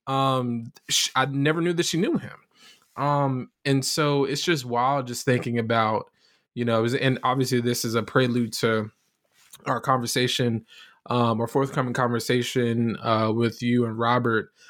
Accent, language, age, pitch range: American, English, 20-39, 115-135 Hz